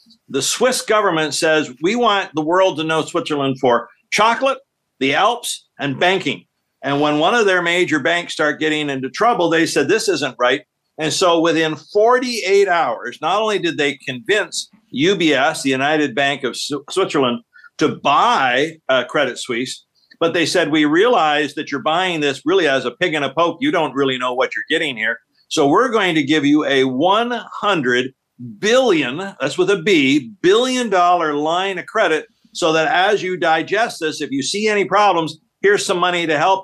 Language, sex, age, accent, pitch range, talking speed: English, male, 50-69, American, 140-195 Hz, 185 wpm